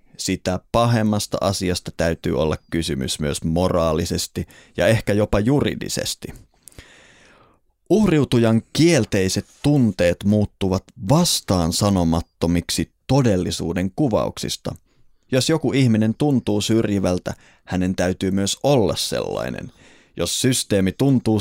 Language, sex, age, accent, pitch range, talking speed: Finnish, male, 30-49, native, 90-115 Hz, 90 wpm